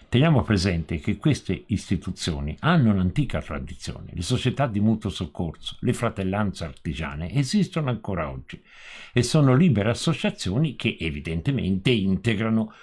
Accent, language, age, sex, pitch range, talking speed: native, Italian, 50-69, male, 80-115 Hz, 120 wpm